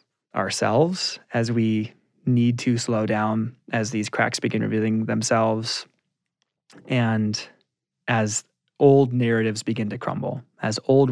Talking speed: 120 wpm